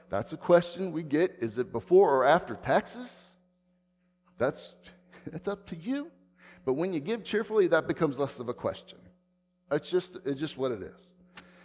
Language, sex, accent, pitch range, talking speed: English, male, American, 140-200 Hz, 175 wpm